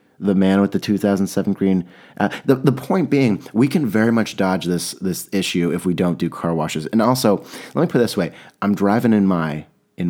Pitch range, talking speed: 85-110 Hz, 225 wpm